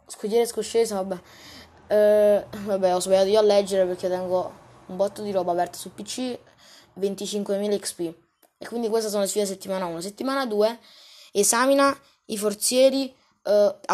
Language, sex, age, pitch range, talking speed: Italian, female, 20-39, 190-240 Hz, 150 wpm